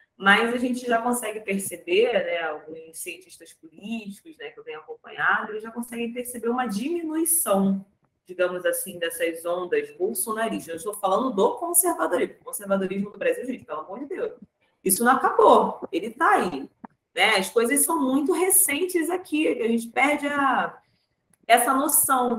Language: Portuguese